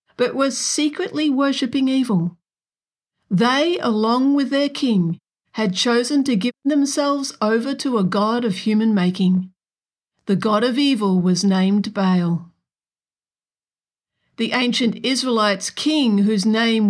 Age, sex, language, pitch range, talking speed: 50-69, female, English, 195-265 Hz, 125 wpm